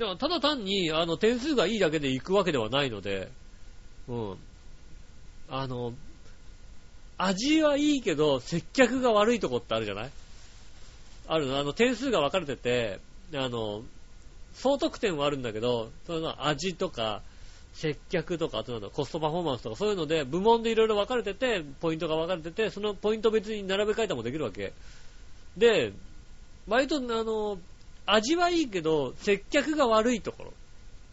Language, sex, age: Japanese, male, 40-59